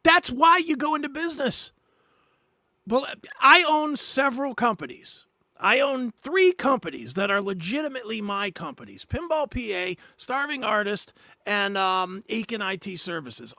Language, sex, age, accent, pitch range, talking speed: English, male, 40-59, American, 200-275 Hz, 130 wpm